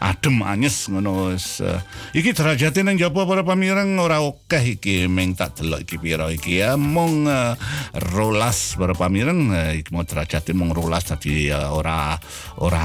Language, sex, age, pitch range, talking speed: Indonesian, male, 60-79, 85-120 Hz, 160 wpm